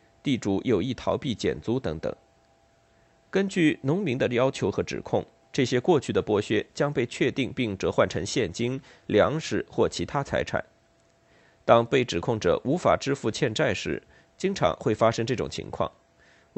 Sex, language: male, Chinese